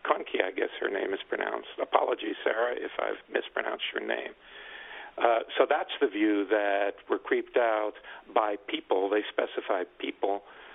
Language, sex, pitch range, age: English, male, 330-440 Hz, 50-69